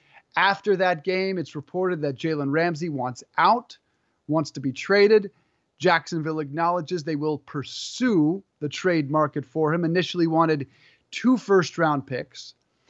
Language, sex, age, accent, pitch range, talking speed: English, male, 30-49, American, 150-190 Hz, 135 wpm